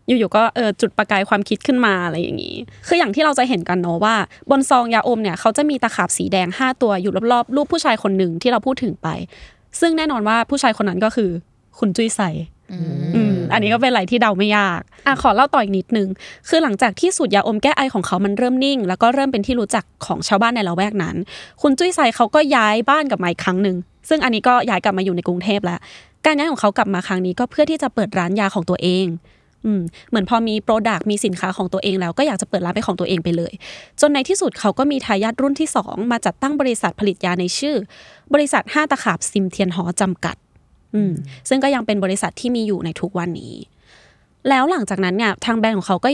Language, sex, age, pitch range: Thai, female, 20-39, 190-255 Hz